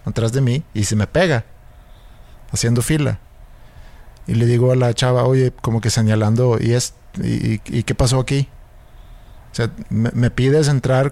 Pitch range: 105-130 Hz